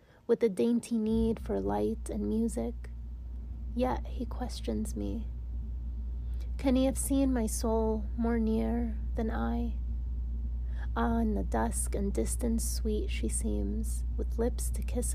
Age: 30-49